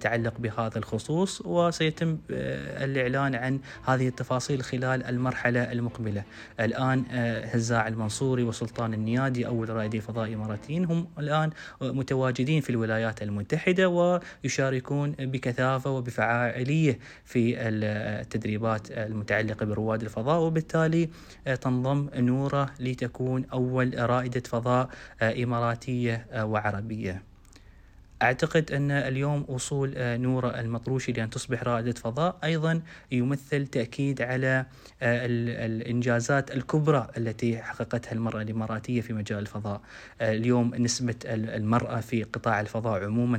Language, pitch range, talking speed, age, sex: Arabic, 110-130 Hz, 100 wpm, 20-39, male